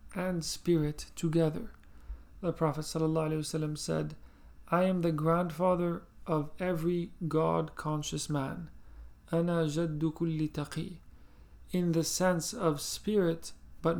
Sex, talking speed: male, 85 wpm